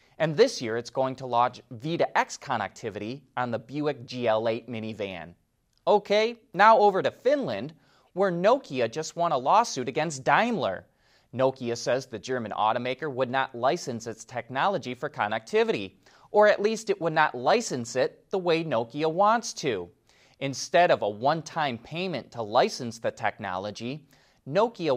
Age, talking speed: 30-49, 150 wpm